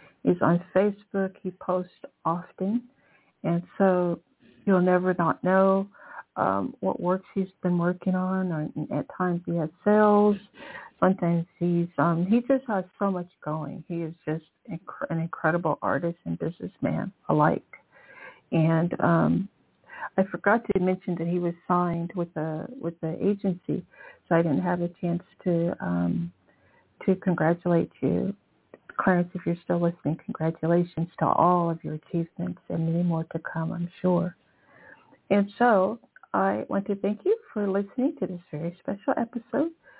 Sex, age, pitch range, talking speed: female, 60-79, 170-200 Hz, 150 wpm